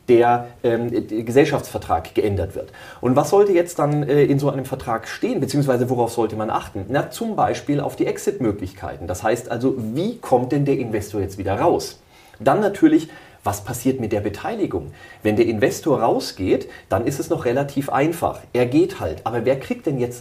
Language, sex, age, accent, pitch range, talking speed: German, male, 40-59, German, 115-140 Hz, 190 wpm